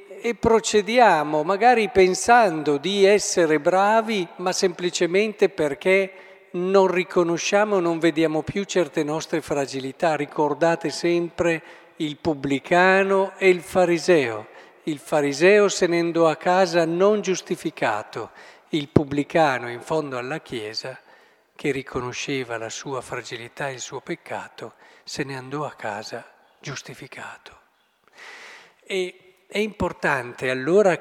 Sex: male